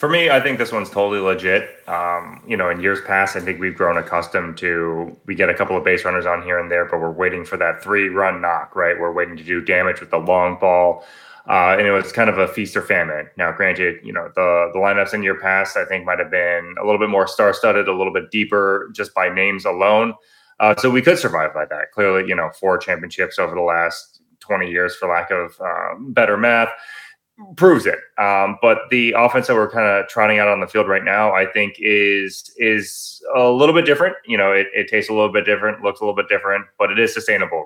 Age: 20-39